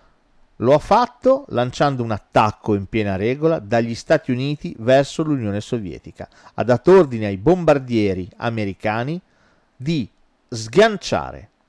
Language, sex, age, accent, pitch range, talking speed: Italian, male, 40-59, native, 110-170 Hz, 120 wpm